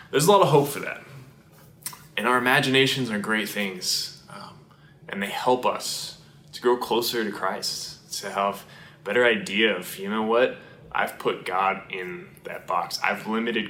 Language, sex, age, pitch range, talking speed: English, male, 20-39, 100-145 Hz, 175 wpm